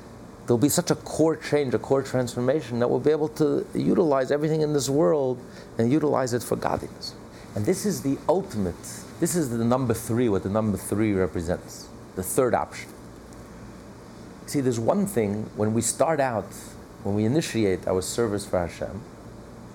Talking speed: 175 wpm